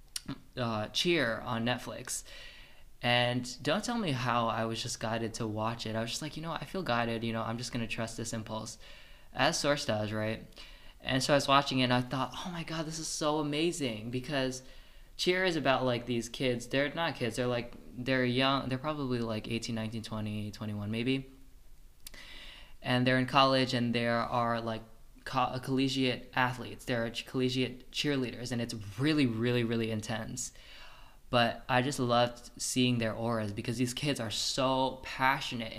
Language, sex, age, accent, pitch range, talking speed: English, male, 20-39, American, 115-130 Hz, 185 wpm